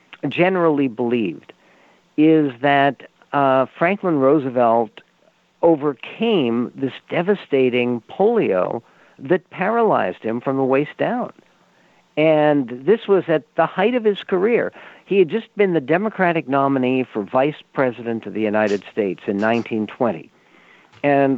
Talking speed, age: 125 wpm, 50-69